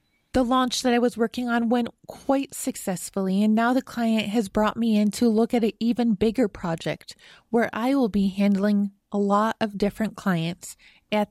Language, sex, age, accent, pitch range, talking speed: English, female, 30-49, American, 200-240 Hz, 190 wpm